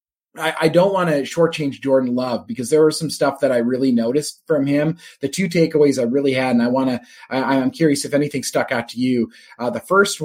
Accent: American